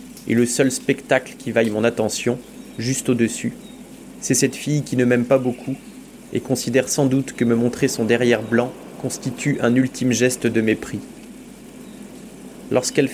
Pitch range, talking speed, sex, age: 120-140 Hz, 160 wpm, male, 20-39